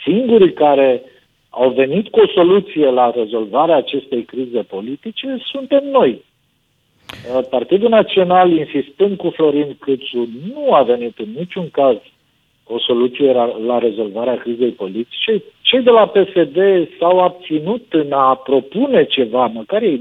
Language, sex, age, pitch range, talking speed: Romanian, male, 50-69, 135-220 Hz, 130 wpm